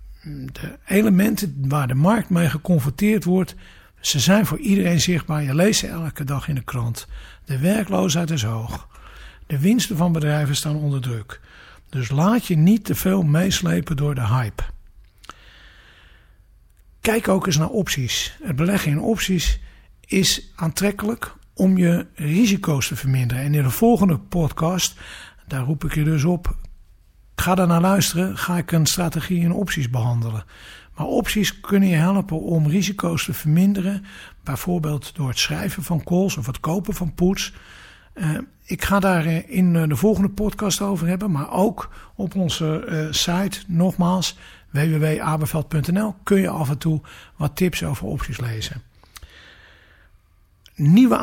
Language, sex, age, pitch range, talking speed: Dutch, male, 60-79, 140-190 Hz, 150 wpm